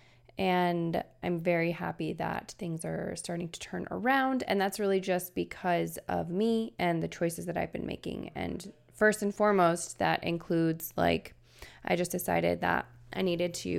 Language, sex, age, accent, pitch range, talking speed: English, female, 20-39, American, 170-210 Hz, 170 wpm